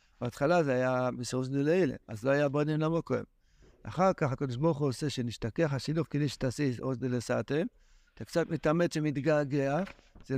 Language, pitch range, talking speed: Hebrew, 125-170 Hz, 170 wpm